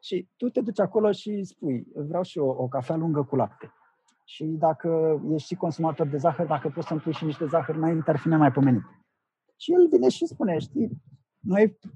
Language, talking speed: Romanian, 200 wpm